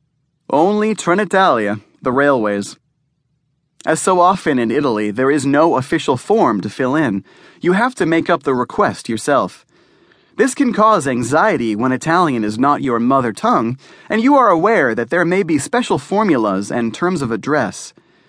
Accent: American